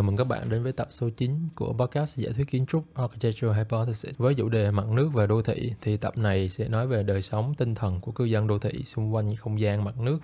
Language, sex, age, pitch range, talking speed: Vietnamese, male, 20-39, 105-130 Hz, 270 wpm